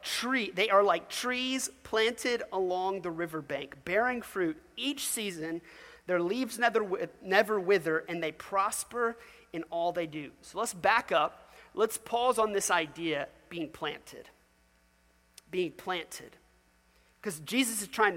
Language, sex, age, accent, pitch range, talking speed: English, male, 30-49, American, 155-225 Hz, 140 wpm